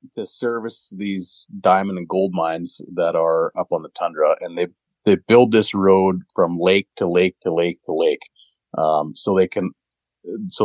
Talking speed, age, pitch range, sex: 180 wpm, 40-59, 80-115 Hz, male